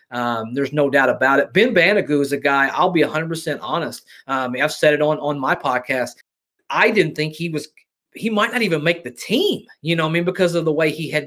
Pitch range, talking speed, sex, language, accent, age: 140-180 Hz, 255 wpm, male, English, American, 30-49